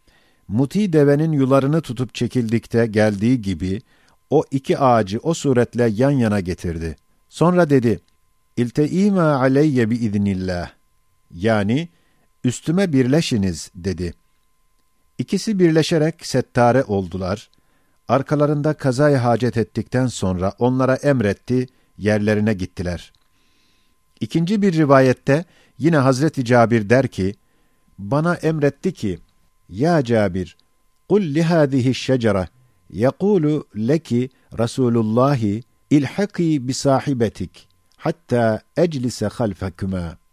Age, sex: 50-69, male